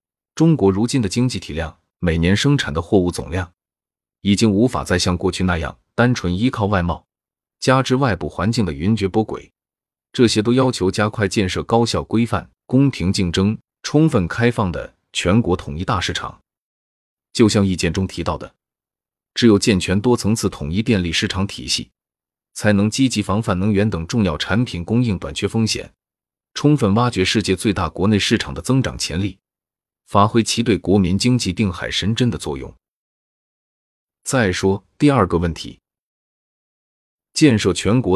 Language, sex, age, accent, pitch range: Chinese, male, 30-49, native, 90-115 Hz